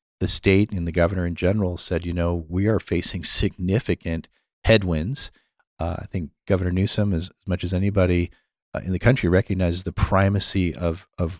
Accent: American